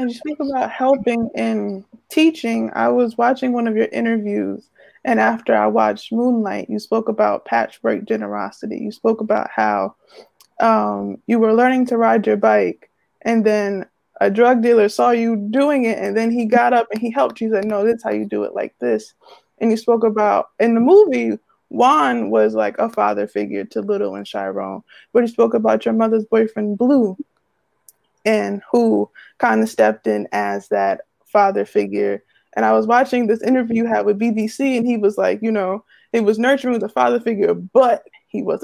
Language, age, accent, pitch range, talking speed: English, 20-39, American, 200-240 Hz, 195 wpm